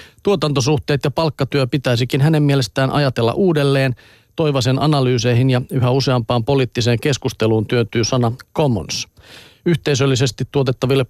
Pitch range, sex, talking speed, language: 120-145 Hz, male, 110 wpm, Finnish